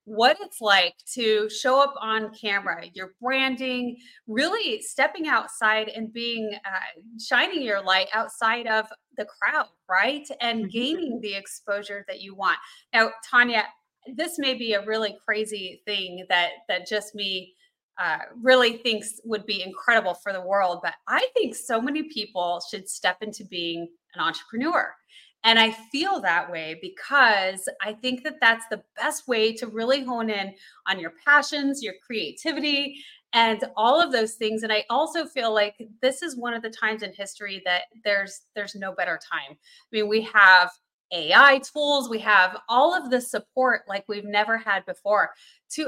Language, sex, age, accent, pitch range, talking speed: English, female, 30-49, American, 200-260 Hz, 170 wpm